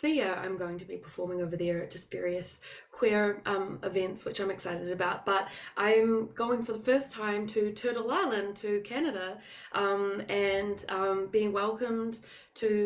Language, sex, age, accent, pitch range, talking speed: English, female, 20-39, Australian, 175-210 Hz, 170 wpm